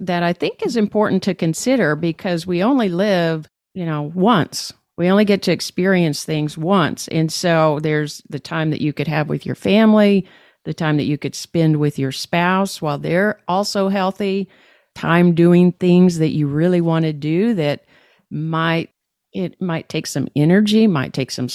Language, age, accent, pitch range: English, 50-69, American, 150-185 Hz